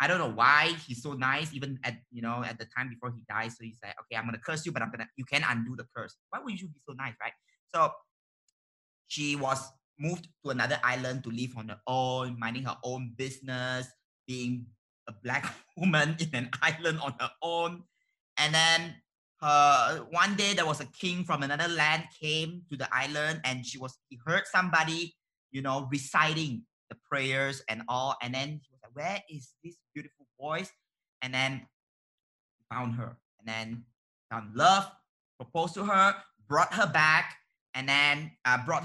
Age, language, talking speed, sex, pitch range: 20-39, English, 185 wpm, male, 125-165 Hz